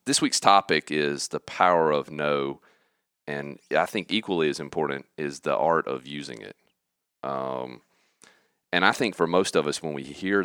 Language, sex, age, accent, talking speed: English, male, 40-59, American, 180 wpm